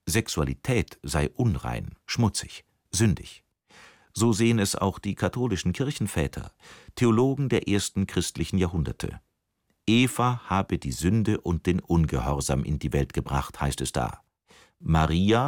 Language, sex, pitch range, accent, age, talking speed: German, male, 80-115 Hz, German, 50-69, 125 wpm